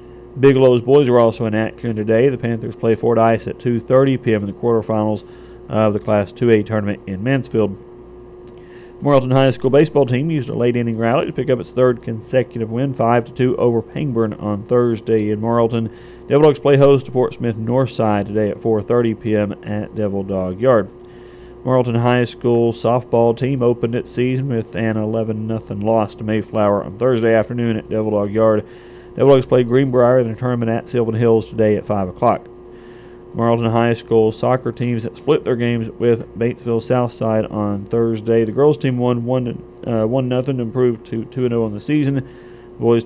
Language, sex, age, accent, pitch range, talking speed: English, male, 40-59, American, 110-125 Hz, 175 wpm